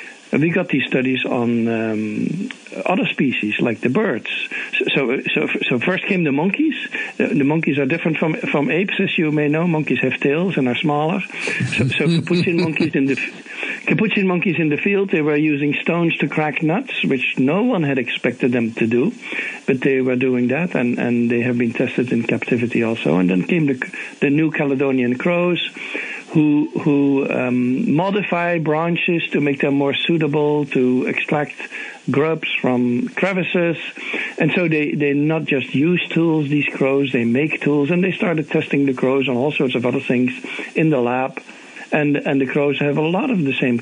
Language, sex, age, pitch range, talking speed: English, male, 60-79, 130-165 Hz, 185 wpm